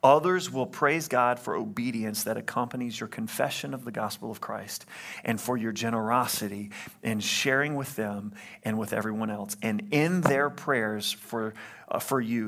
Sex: male